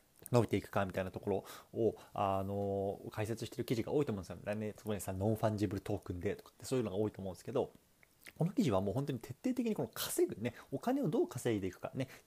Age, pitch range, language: 20-39, 105-140 Hz, Japanese